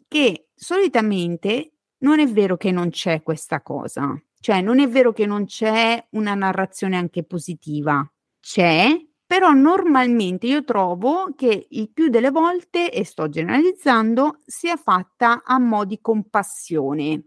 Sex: female